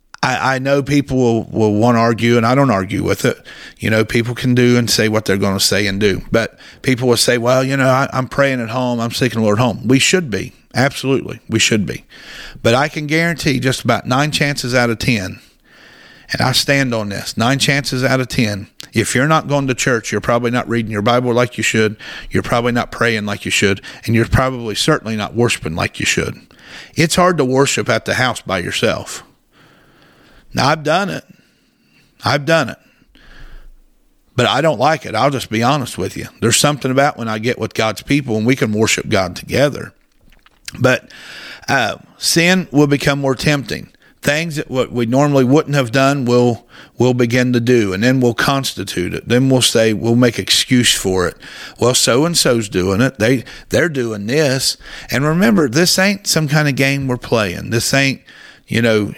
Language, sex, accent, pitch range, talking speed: English, male, American, 115-140 Hz, 205 wpm